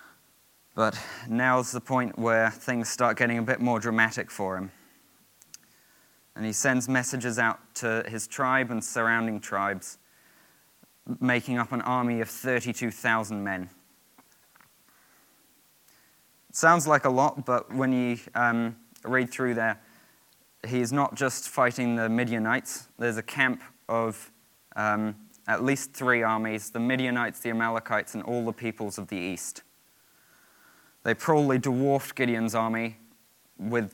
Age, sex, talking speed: 20-39, male, 135 wpm